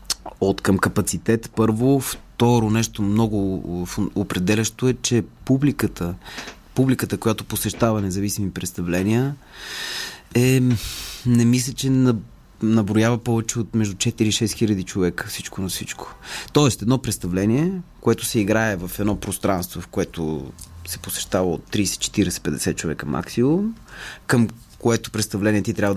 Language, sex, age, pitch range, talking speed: Bulgarian, male, 20-39, 95-125 Hz, 120 wpm